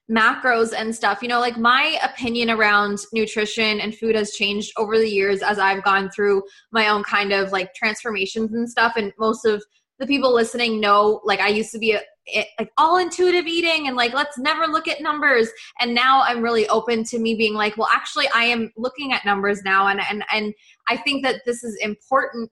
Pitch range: 215-245 Hz